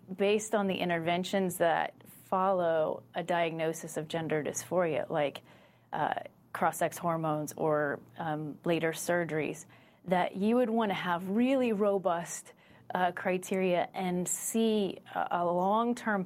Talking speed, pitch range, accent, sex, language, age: 120 wpm, 170-210 Hz, American, female, English, 30-49